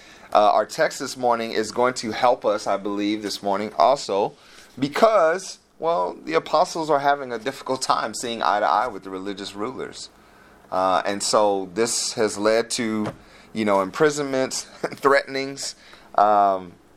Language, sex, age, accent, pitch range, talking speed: English, male, 30-49, American, 95-125 Hz, 155 wpm